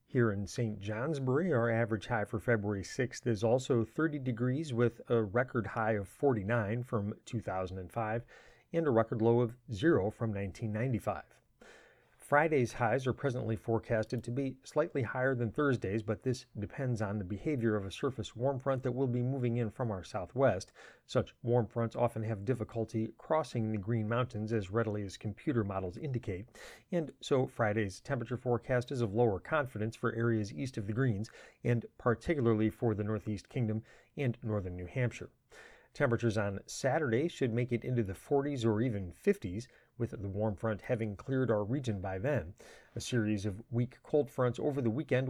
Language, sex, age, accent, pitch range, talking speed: English, male, 40-59, American, 110-125 Hz, 175 wpm